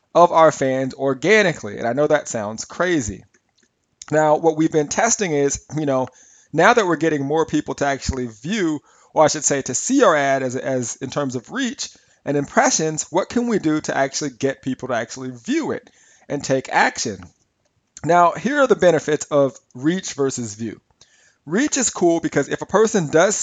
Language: English